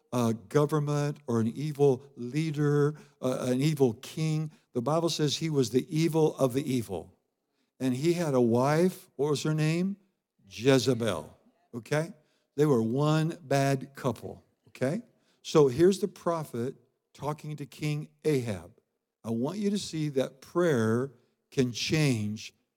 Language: English